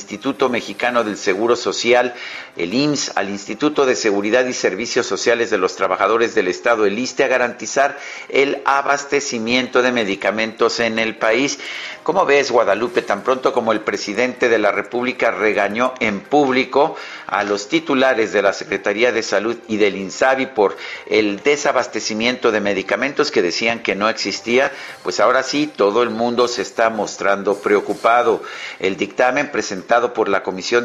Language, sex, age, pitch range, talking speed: Spanish, male, 50-69, 105-130 Hz, 160 wpm